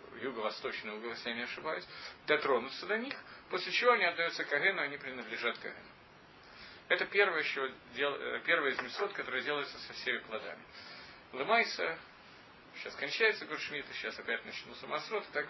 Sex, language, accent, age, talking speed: male, Russian, native, 40-59, 145 wpm